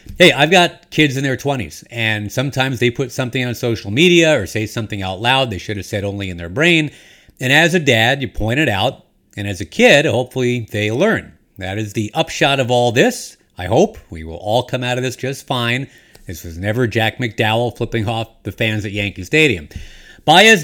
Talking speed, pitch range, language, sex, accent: 215 wpm, 105-150 Hz, English, male, American